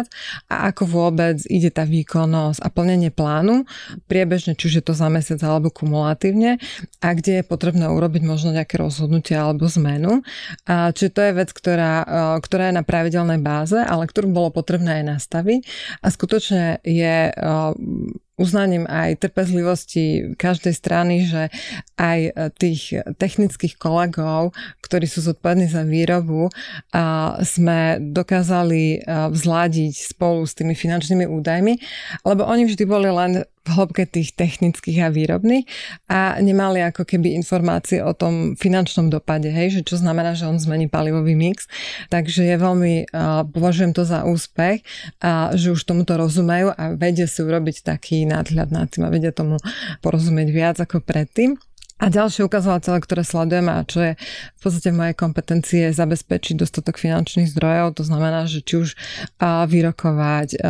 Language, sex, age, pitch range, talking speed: Slovak, female, 30-49, 160-180 Hz, 145 wpm